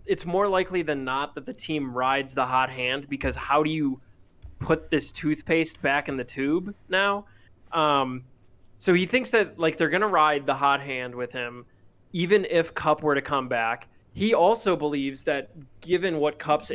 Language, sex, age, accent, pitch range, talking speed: English, male, 20-39, American, 130-170 Hz, 190 wpm